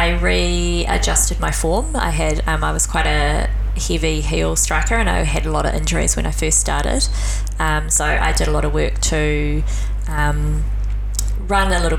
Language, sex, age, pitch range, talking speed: English, female, 20-39, 100-155 Hz, 190 wpm